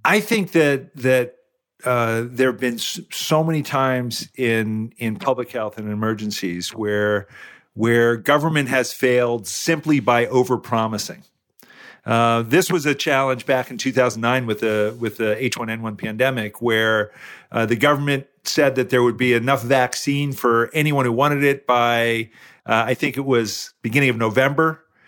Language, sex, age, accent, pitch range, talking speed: English, male, 50-69, American, 120-145 Hz, 155 wpm